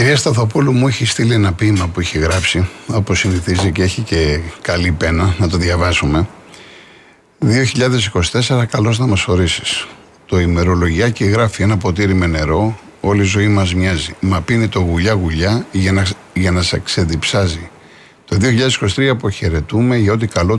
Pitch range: 90-110 Hz